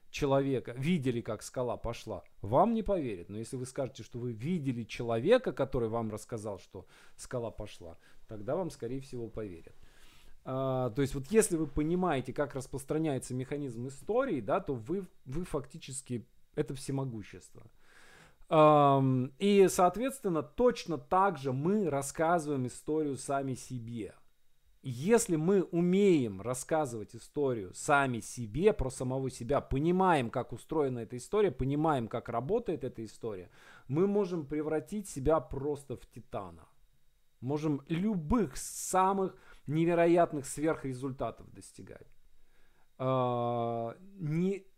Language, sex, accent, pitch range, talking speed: Russian, male, native, 120-165 Hz, 115 wpm